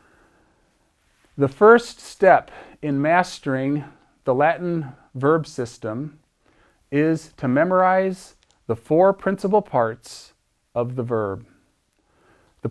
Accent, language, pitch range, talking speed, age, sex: American, English, 135-175 Hz, 95 wpm, 40-59, male